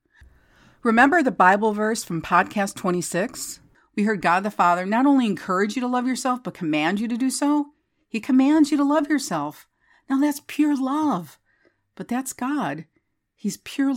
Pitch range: 170-255 Hz